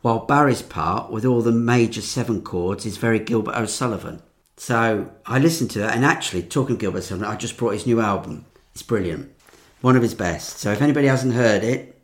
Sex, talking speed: male, 210 wpm